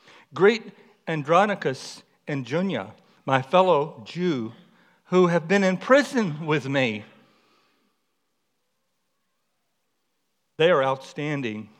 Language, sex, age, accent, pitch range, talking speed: English, male, 60-79, American, 135-185 Hz, 85 wpm